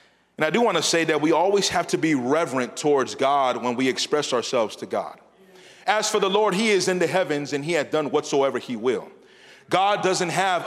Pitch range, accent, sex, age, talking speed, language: 180-230 Hz, American, male, 30-49, 225 wpm, English